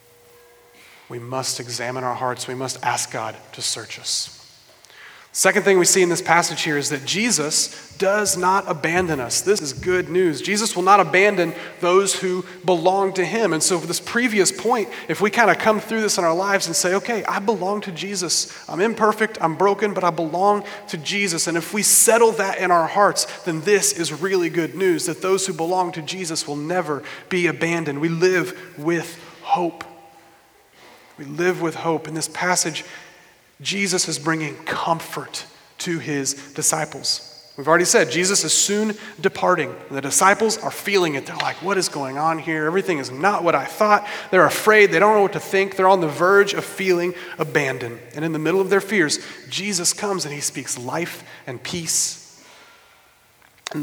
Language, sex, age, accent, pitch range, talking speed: English, male, 30-49, American, 155-195 Hz, 190 wpm